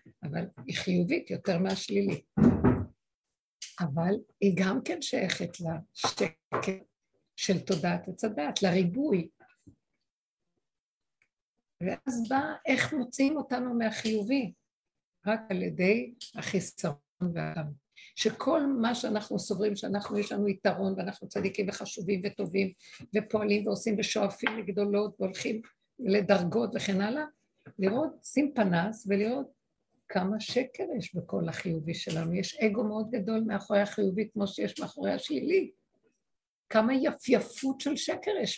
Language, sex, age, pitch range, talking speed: Hebrew, female, 50-69, 190-235 Hz, 110 wpm